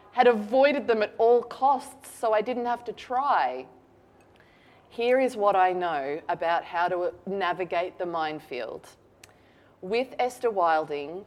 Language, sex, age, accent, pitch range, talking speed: English, female, 20-39, Australian, 170-215 Hz, 140 wpm